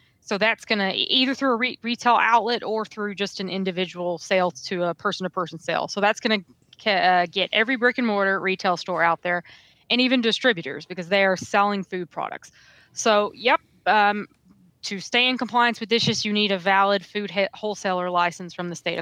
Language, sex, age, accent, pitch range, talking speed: English, female, 20-39, American, 175-205 Hz, 195 wpm